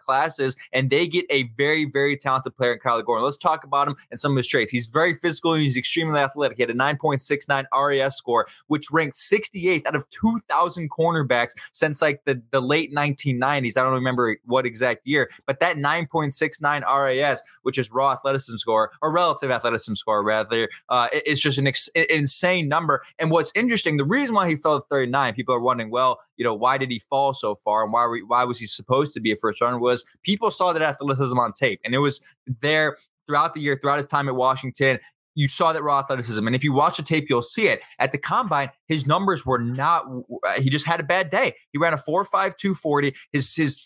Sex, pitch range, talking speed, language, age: male, 130-160 Hz, 225 wpm, English, 20-39